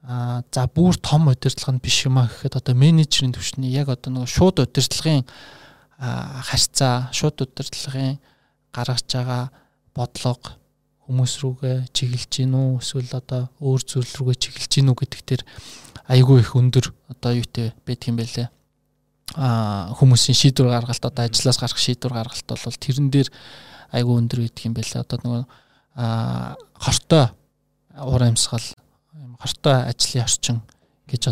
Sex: male